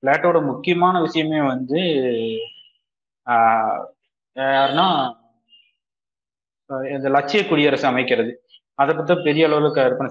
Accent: native